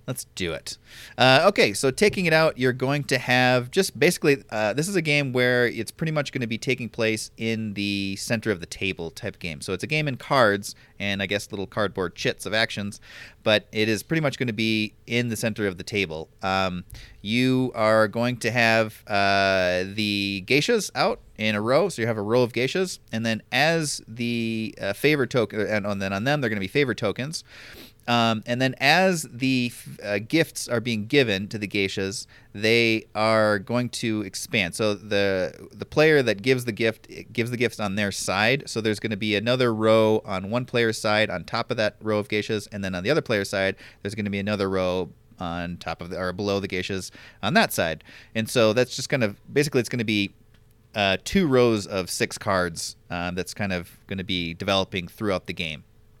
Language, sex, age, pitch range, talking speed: English, male, 30-49, 100-120 Hz, 220 wpm